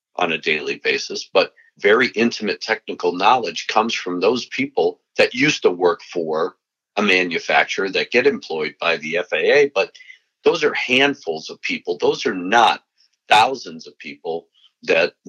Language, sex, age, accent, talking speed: English, male, 50-69, American, 155 wpm